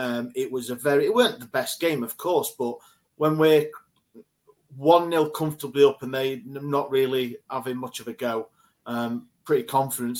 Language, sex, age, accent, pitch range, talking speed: English, male, 30-49, British, 120-145 Hz, 175 wpm